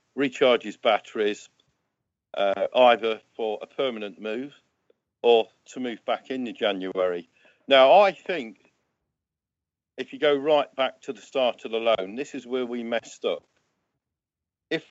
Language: English